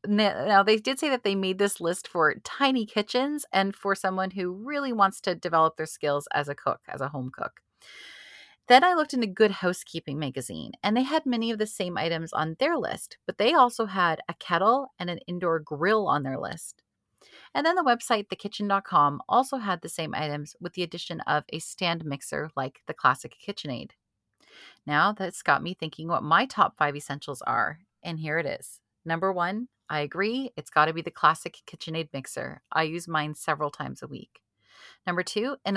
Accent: American